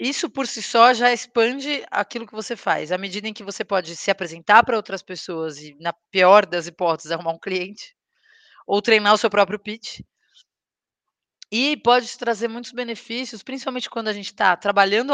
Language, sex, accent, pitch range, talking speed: Portuguese, female, Brazilian, 185-220 Hz, 180 wpm